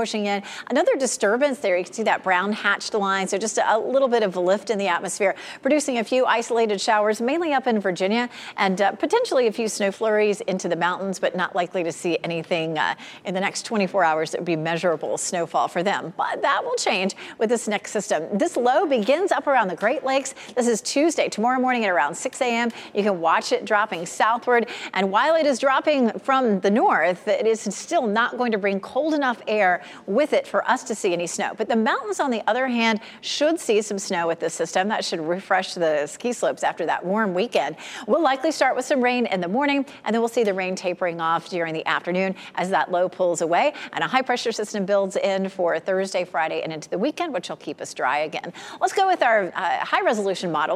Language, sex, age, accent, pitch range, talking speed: English, female, 40-59, American, 185-245 Hz, 230 wpm